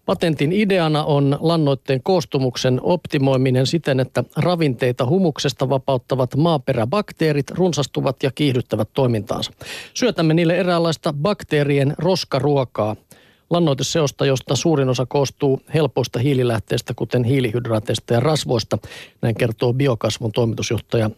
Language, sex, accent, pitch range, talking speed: Finnish, male, native, 130-160 Hz, 100 wpm